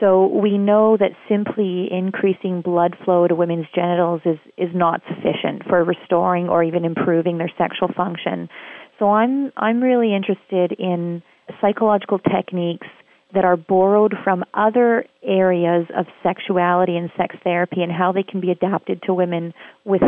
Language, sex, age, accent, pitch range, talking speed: English, female, 30-49, American, 175-195 Hz, 150 wpm